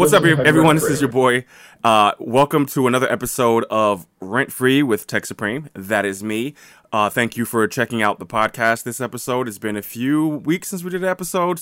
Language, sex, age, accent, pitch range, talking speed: English, male, 20-39, American, 105-125 Hz, 210 wpm